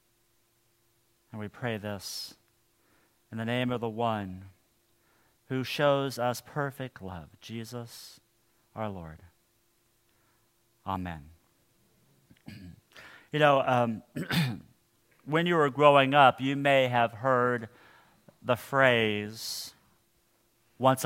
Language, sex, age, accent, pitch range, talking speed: English, male, 50-69, American, 115-155 Hz, 95 wpm